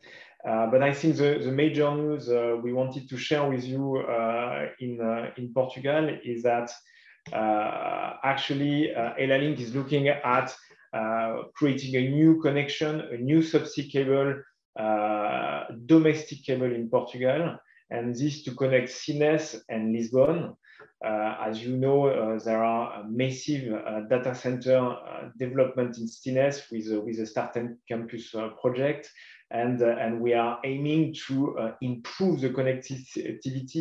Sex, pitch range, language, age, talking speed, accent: male, 120-140 Hz, English, 30-49, 150 wpm, French